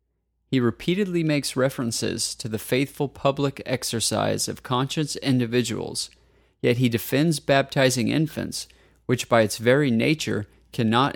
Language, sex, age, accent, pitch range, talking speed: English, male, 30-49, American, 110-135 Hz, 125 wpm